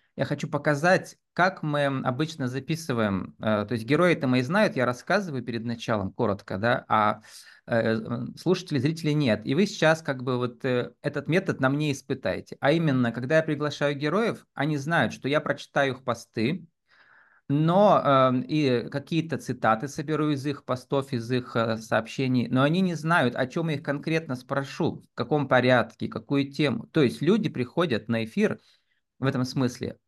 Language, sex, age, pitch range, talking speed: Russian, male, 20-39, 125-160 Hz, 160 wpm